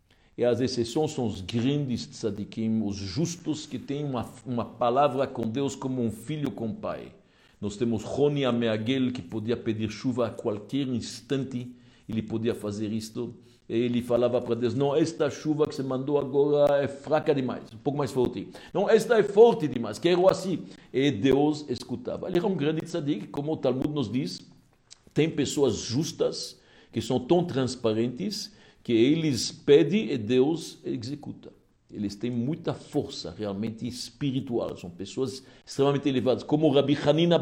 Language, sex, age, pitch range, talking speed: Portuguese, male, 60-79, 120-175 Hz, 165 wpm